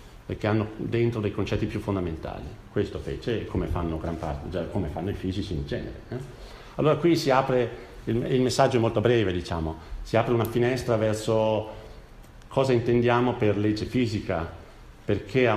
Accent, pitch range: native, 95-120 Hz